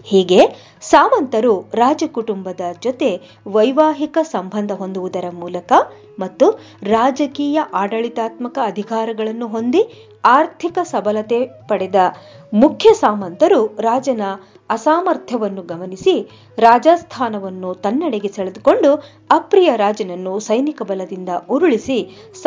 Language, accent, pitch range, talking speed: English, Indian, 195-290 Hz, 70 wpm